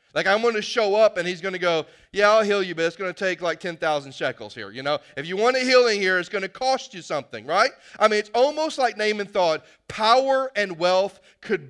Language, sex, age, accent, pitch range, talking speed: English, male, 30-49, American, 180-255 Hz, 255 wpm